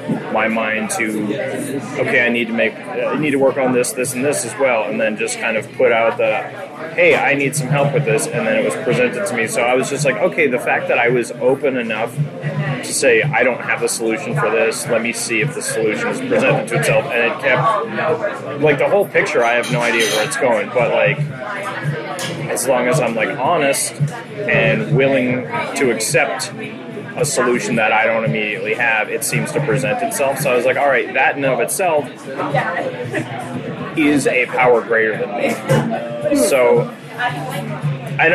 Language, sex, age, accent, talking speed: English, male, 30-49, American, 205 wpm